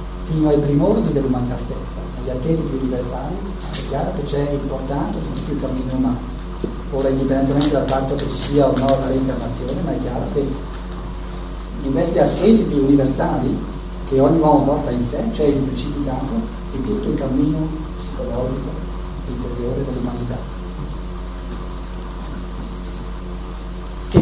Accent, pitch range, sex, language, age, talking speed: native, 90-145 Hz, male, Italian, 40-59, 140 wpm